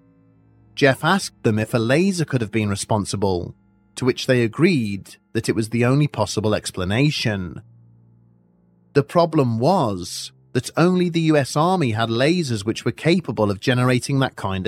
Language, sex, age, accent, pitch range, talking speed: English, male, 30-49, British, 105-150 Hz, 155 wpm